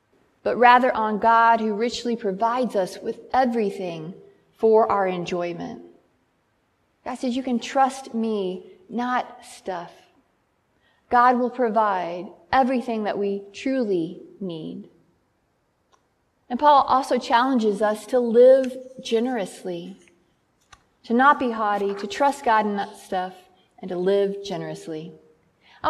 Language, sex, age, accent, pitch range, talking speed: English, female, 30-49, American, 200-255 Hz, 120 wpm